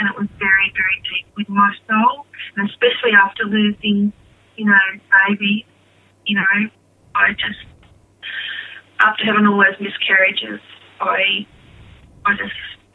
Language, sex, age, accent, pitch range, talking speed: English, female, 30-49, Australian, 200-235 Hz, 125 wpm